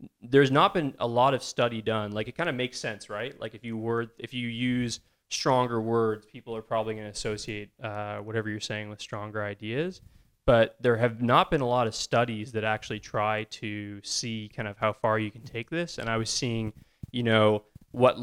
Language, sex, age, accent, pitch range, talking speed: English, male, 20-39, American, 105-115 Hz, 215 wpm